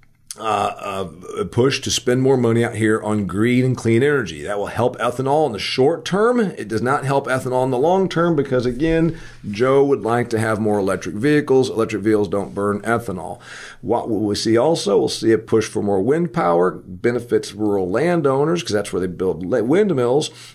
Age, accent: 40-59, American